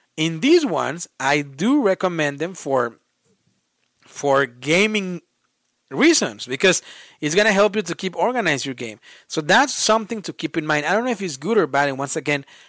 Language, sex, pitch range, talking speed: English, male, 140-190 Hz, 190 wpm